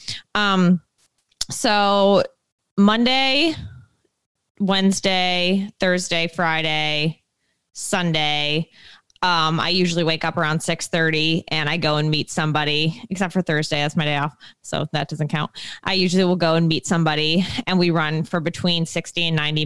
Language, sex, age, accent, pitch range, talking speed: English, female, 20-39, American, 165-205 Hz, 145 wpm